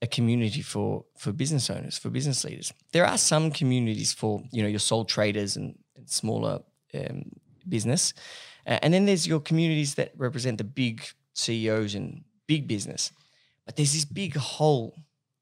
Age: 20-39